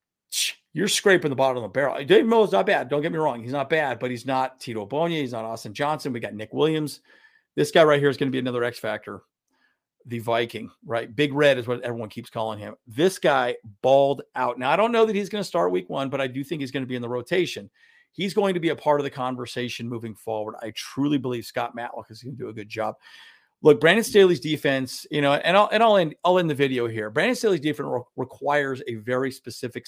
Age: 40-59